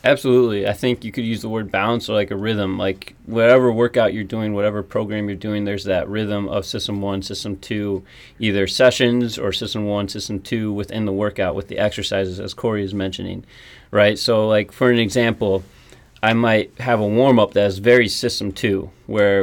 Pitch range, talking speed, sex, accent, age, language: 100-115 Hz, 200 wpm, male, American, 30-49, English